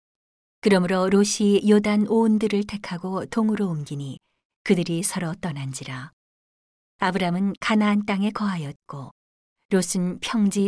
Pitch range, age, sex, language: 155-200 Hz, 40-59, female, Korean